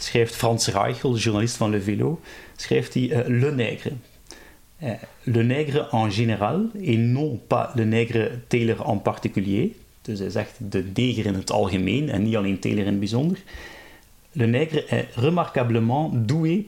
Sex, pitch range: male, 115-145 Hz